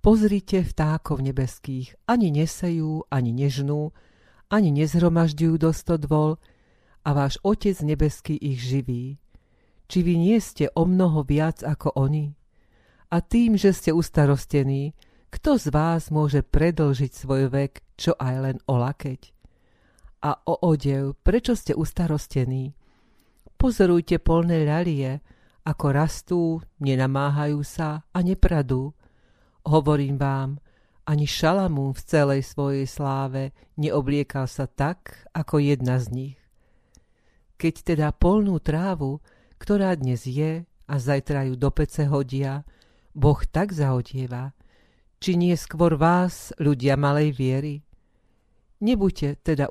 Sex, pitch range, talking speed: female, 135-165 Hz, 120 wpm